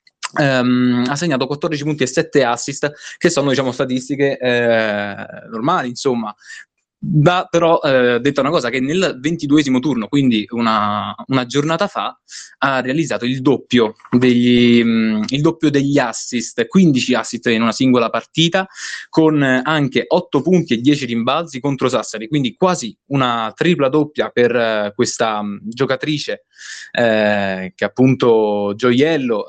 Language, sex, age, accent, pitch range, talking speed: Italian, male, 20-39, native, 115-150 Hz, 140 wpm